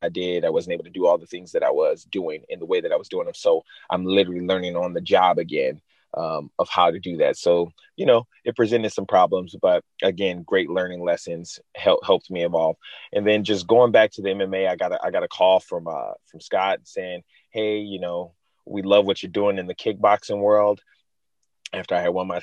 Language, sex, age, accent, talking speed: English, male, 20-39, American, 235 wpm